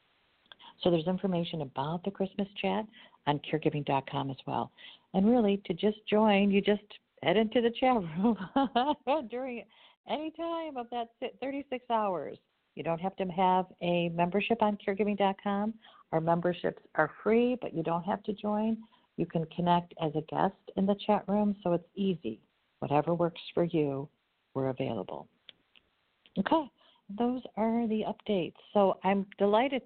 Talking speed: 155 wpm